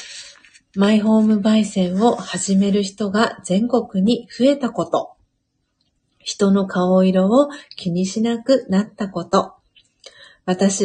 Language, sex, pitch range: Japanese, female, 185-235 Hz